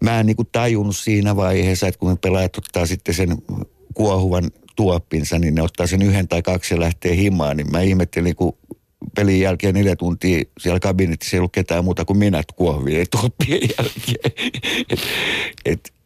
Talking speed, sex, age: 175 wpm, male, 60-79